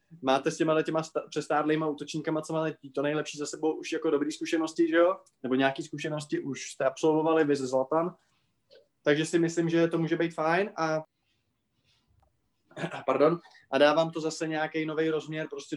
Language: Czech